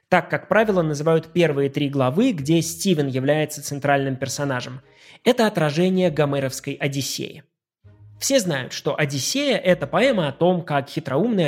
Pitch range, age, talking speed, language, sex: 135-185 Hz, 20-39, 140 wpm, Russian, male